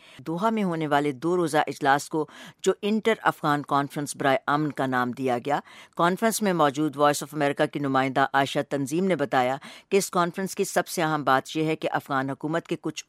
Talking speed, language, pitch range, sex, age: 205 wpm, English, 145-175 Hz, female, 60-79